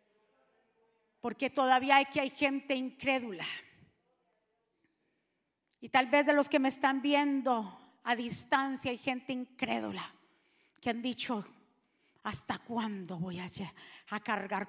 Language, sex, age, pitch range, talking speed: Spanish, female, 40-59, 210-300 Hz, 115 wpm